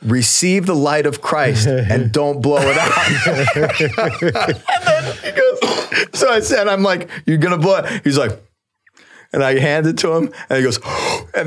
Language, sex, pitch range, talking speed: English, male, 110-150 Hz, 180 wpm